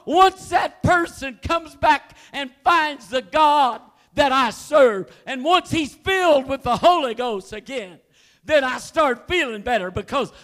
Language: English